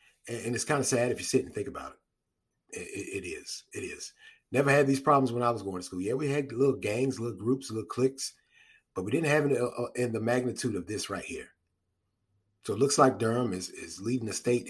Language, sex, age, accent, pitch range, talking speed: English, male, 30-49, American, 120-170 Hz, 240 wpm